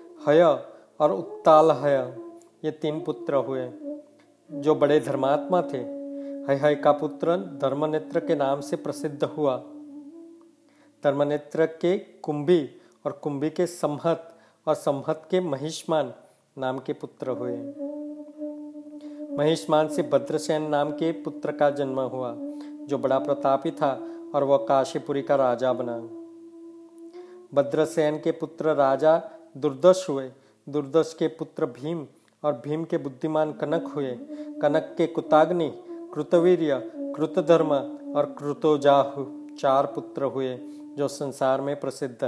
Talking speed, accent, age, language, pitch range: 105 wpm, native, 40-59, Hindi, 145-175 Hz